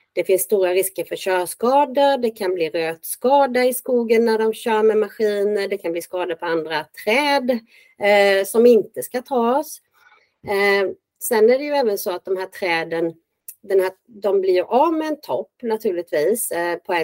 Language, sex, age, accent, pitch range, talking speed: Swedish, female, 30-49, native, 170-250 Hz, 185 wpm